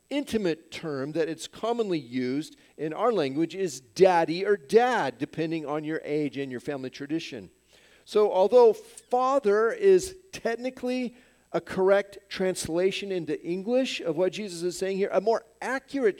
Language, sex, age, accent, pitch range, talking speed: English, male, 40-59, American, 140-225 Hz, 150 wpm